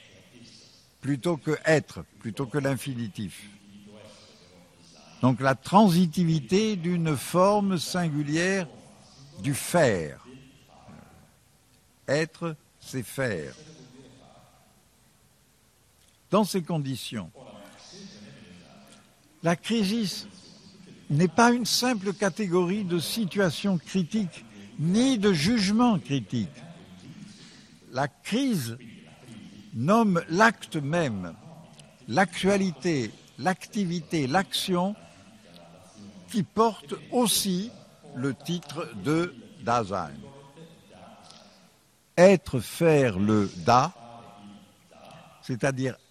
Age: 60-79